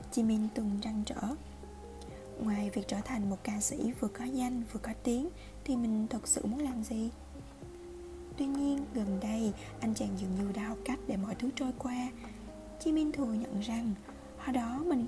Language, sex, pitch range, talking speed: Vietnamese, female, 205-260 Hz, 190 wpm